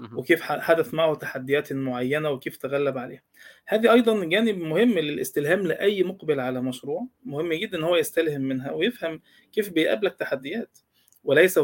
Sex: male